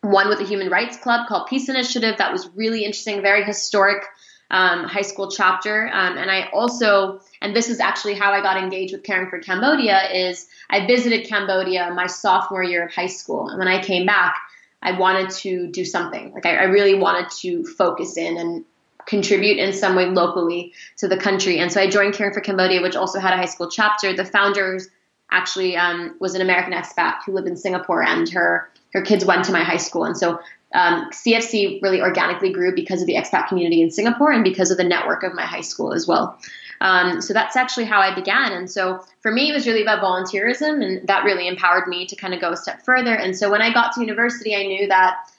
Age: 20-39